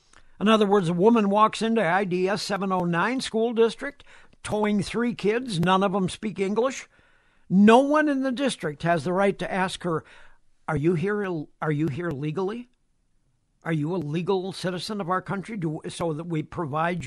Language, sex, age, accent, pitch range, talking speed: English, male, 60-79, American, 170-220 Hz, 190 wpm